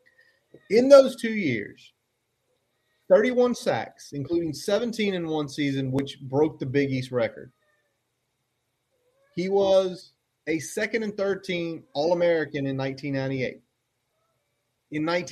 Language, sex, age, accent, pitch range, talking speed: English, male, 30-49, American, 130-170 Hz, 100 wpm